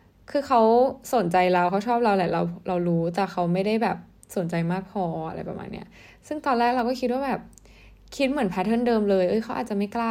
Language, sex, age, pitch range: Thai, female, 10-29, 180-225 Hz